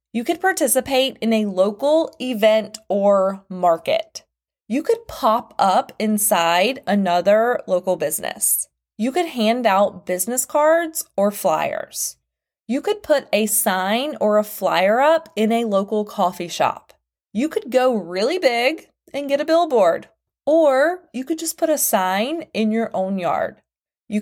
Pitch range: 200-300 Hz